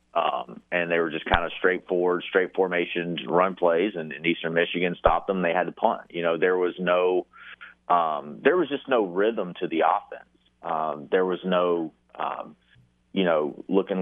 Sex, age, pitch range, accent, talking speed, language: male, 30-49, 85-95 Hz, American, 190 wpm, English